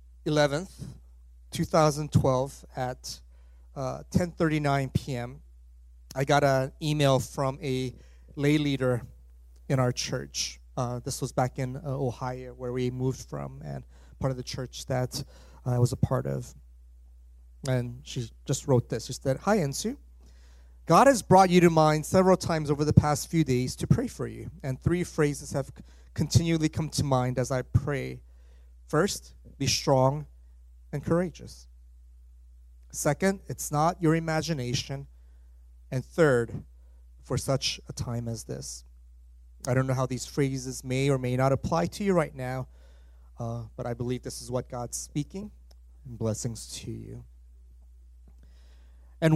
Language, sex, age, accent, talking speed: English, male, 30-49, American, 150 wpm